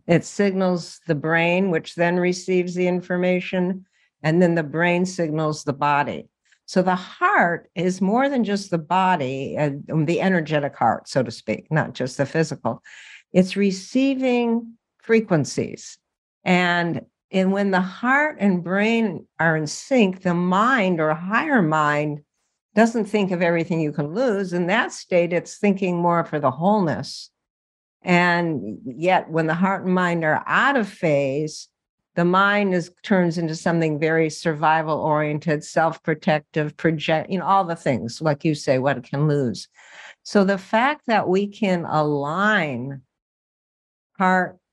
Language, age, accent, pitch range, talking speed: English, 60-79, American, 155-195 Hz, 150 wpm